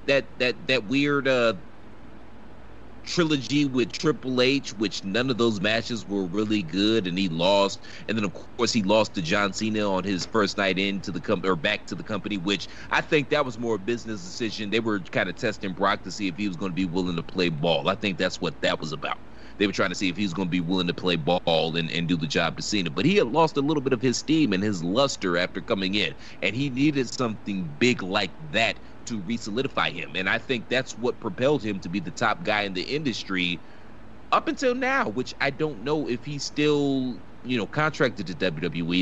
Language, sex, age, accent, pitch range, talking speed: English, male, 30-49, American, 95-130 Hz, 235 wpm